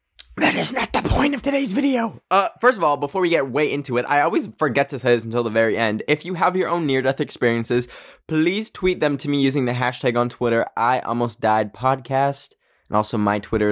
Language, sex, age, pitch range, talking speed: English, male, 10-29, 115-165 Hz, 230 wpm